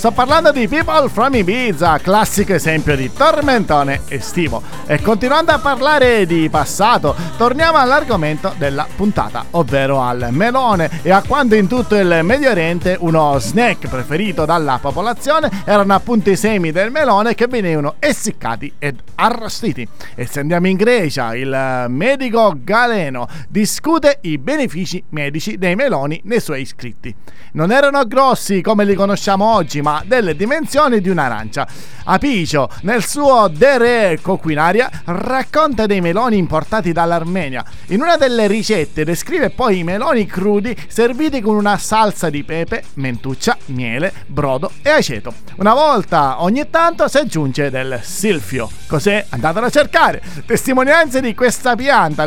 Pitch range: 155-240 Hz